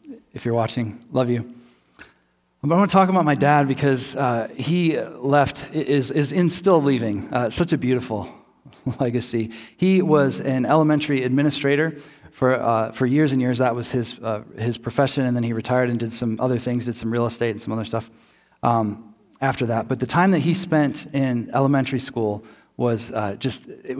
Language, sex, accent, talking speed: English, male, American, 195 wpm